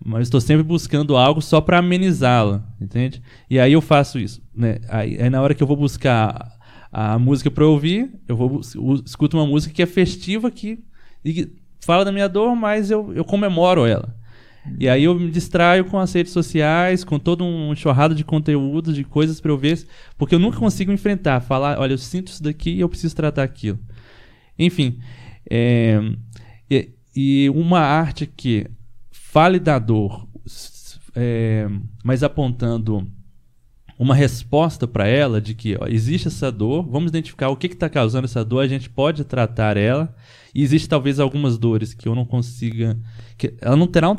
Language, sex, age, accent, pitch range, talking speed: Portuguese, male, 20-39, Brazilian, 115-155 Hz, 190 wpm